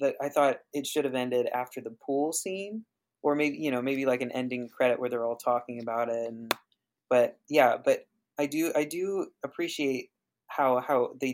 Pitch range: 120-140 Hz